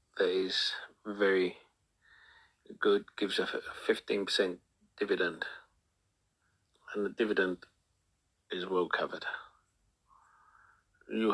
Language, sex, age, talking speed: English, male, 40-59, 80 wpm